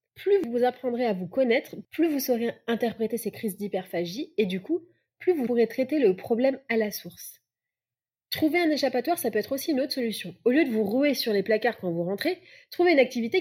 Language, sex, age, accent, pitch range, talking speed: French, female, 20-39, French, 205-260 Hz, 220 wpm